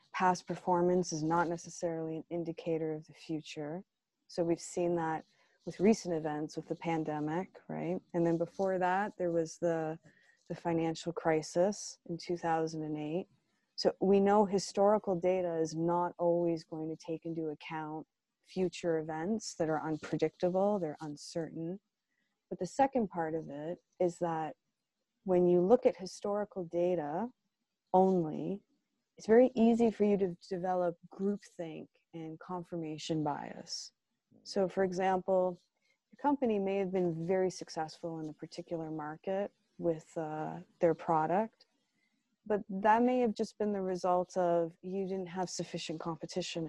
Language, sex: English, female